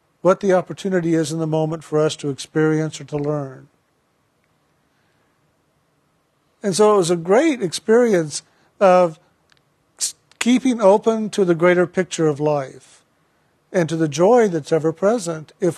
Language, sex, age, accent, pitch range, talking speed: English, male, 50-69, American, 160-200 Hz, 140 wpm